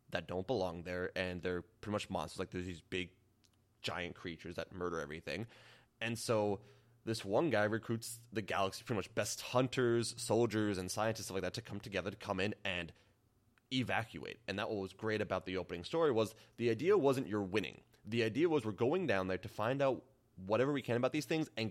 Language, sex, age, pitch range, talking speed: English, male, 20-39, 100-130 Hz, 210 wpm